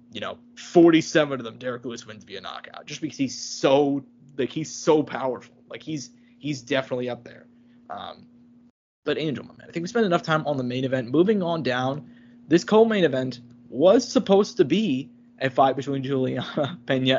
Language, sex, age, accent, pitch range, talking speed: English, male, 20-39, American, 125-170 Hz, 190 wpm